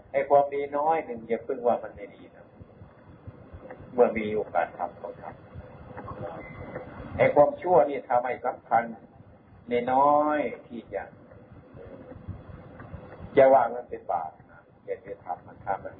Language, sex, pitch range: Thai, male, 120-150 Hz